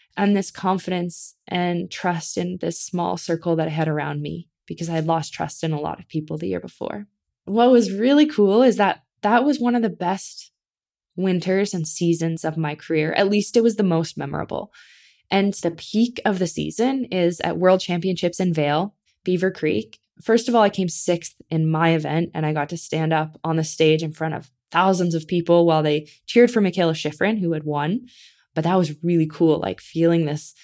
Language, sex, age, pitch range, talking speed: English, female, 20-39, 160-195 Hz, 210 wpm